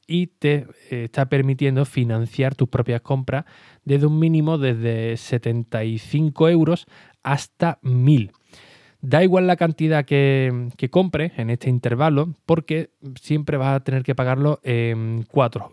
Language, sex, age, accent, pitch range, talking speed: Spanish, male, 20-39, Spanish, 115-140 Hz, 135 wpm